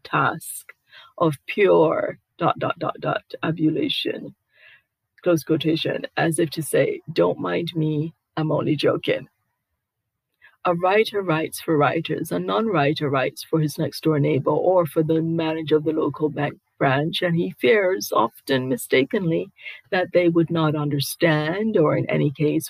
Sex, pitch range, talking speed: female, 145-170 Hz, 145 wpm